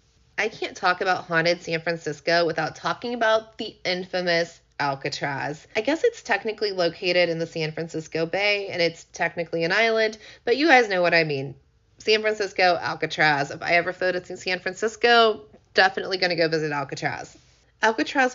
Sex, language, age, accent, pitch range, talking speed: female, English, 30-49, American, 160-195 Hz, 165 wpm